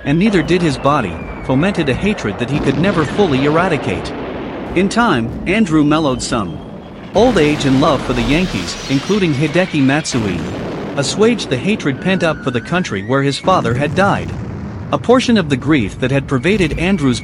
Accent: American